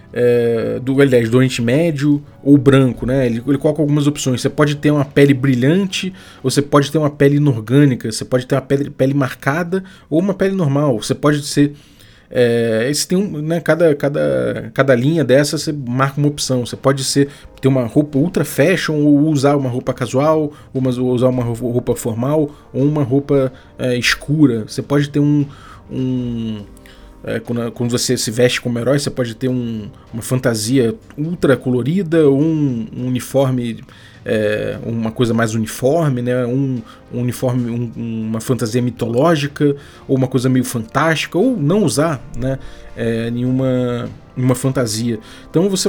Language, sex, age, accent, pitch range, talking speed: Portuguese, male, 20-39, Brazilian, 125-150 Hz, 170 wpm